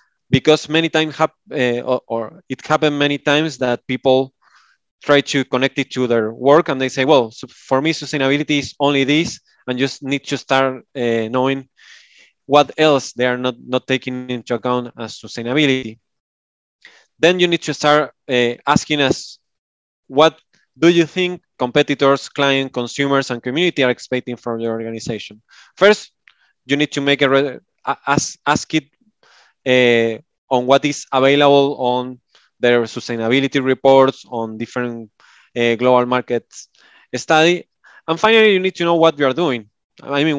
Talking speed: 155 wpm